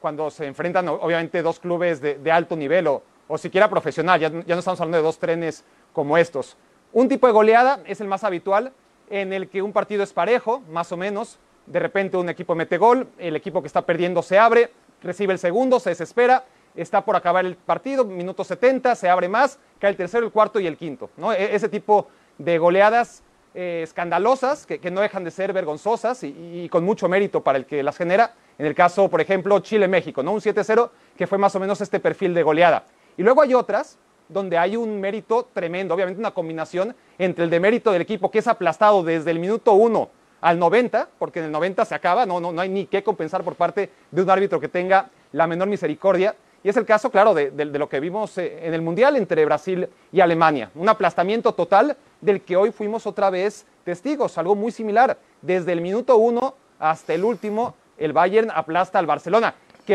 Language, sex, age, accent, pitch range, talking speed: Spanish, male, 30-49, Mexican, 170-215 Hz, 215 wpm